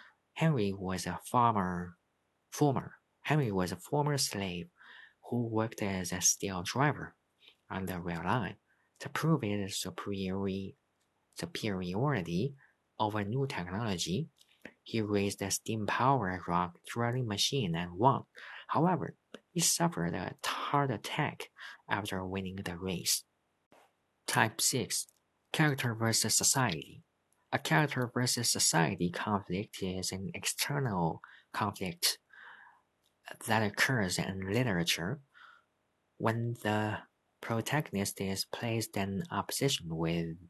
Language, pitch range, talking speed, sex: English, 95-120 Hz, 110 wpm, male